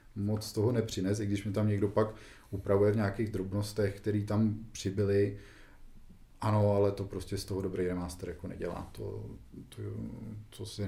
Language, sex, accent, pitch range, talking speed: Czech, male, native, 100-115 Hz, 170 wpm